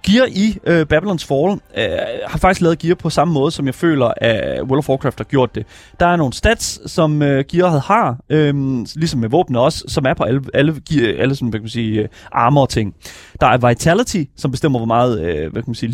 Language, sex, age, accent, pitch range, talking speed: Danish, male, 30-49, native, 120-155 Hz, 225 wpm